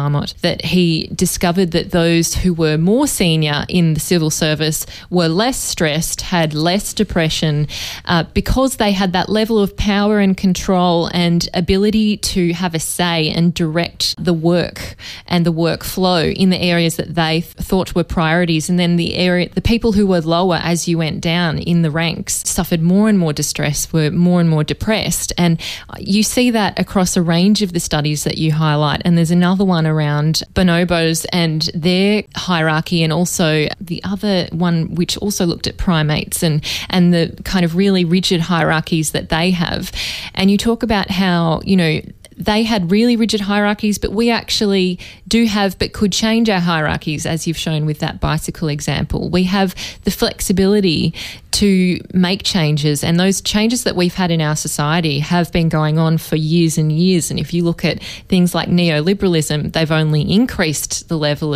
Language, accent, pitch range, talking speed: English, Australian, 160-190 Hz, 180 wpm